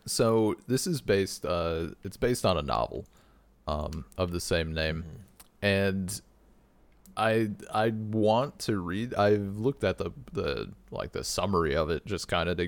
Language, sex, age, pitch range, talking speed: English, male, 30-49, 85-110 Hz, 165 wpm